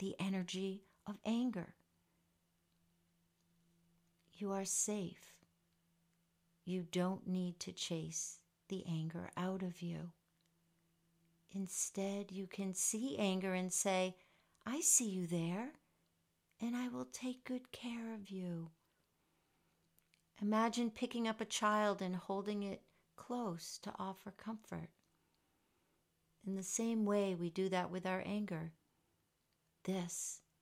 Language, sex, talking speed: English, female, 115 wpm